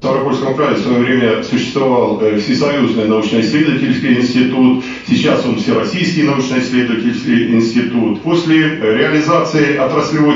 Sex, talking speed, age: male, 105 wpm, 50-69